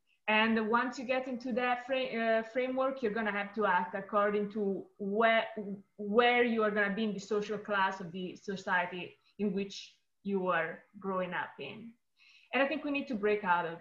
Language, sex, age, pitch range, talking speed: English, female, 20-39, 205-250 Hz, 200 wpm